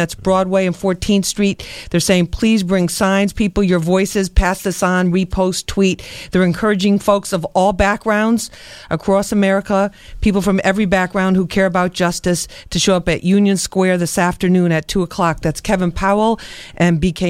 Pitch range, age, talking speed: 175-205 Hz, 50-69, 175 wpm